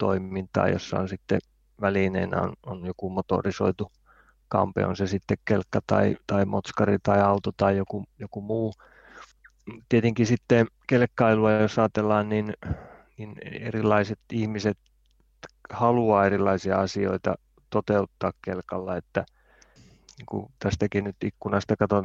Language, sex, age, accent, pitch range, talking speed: Finnish, male, 30-49, native, 95-105 Hz, 110 wpm